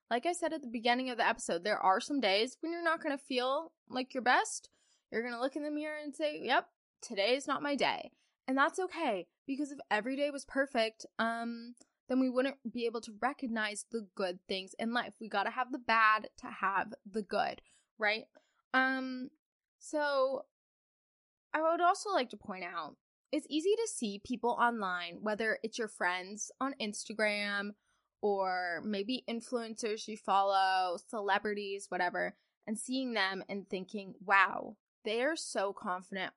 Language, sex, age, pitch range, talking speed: English, female, 10-29, 205-270 Hz, 180 wpm